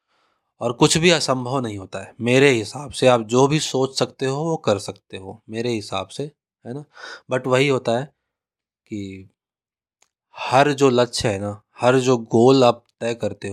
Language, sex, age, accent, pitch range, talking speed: Hindi, male, 20-39, native, 110-135 Hz, 180 wpm